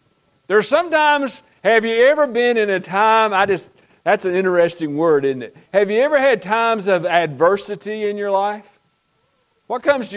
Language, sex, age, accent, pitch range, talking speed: English, male, 50-69, American, 170-235 Hz, 175 wpm